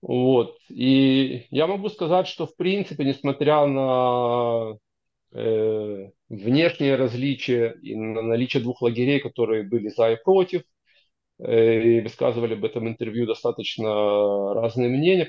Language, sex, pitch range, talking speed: Russian, male, 115-145 Hz, 120 wpm